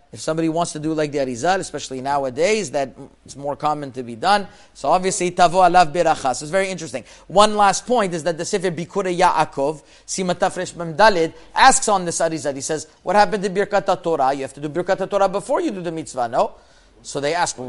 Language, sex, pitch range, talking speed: English, male, 145-185 Hz, 225 wpm